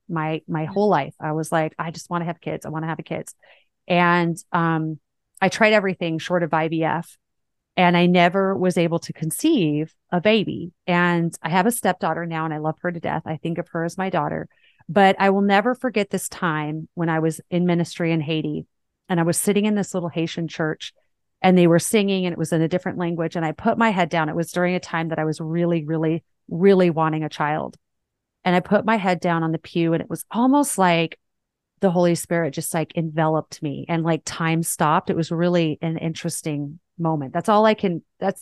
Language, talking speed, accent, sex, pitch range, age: English, 225 wpm, American, female, 160-195 Hz, 30-49